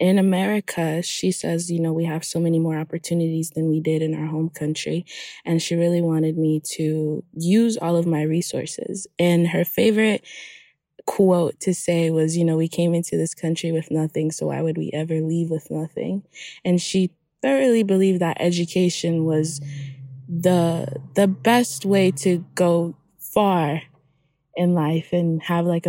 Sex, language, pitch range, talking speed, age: female, English, 160-205 Hz, 170 wpm, 20-39